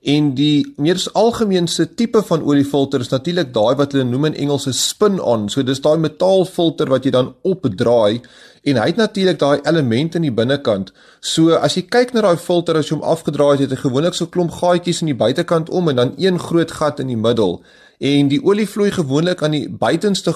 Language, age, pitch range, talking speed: English, 30-49, 135-180 Hz, 210 wpm